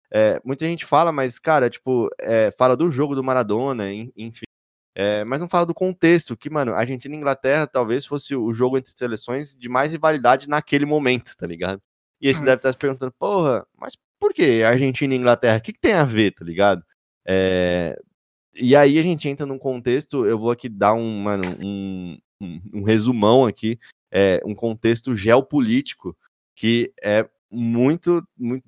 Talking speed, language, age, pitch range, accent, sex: 160 wpm, Portuguese, 20-39, 100-135 Hz, Brazilian, male